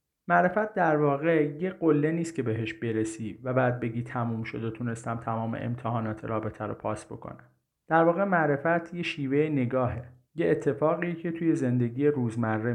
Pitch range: 120-150 Hz